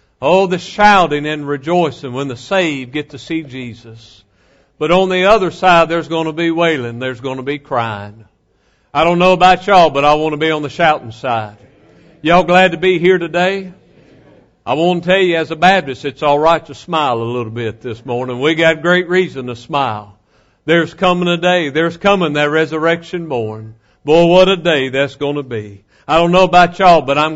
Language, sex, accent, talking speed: English, male, American, 205 wpm